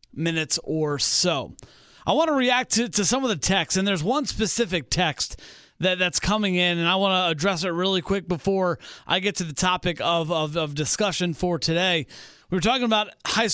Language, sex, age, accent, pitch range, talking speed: English, male, 30-49, American, 180-230 Hz, 205 wpm